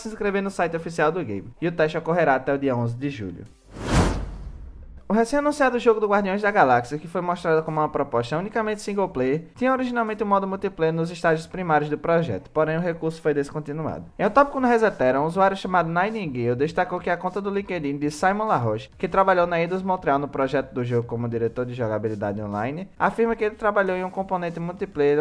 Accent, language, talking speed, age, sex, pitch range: Brazilian, Portuguese, 210 wpm, 20-39, male, 140-195 Hz